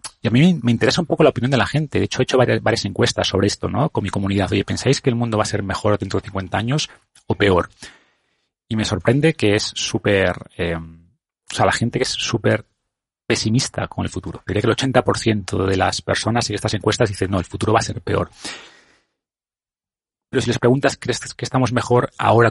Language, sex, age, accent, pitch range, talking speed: Spanish, male, 30-49, Spanish, 100-120 Hz, 220 wpm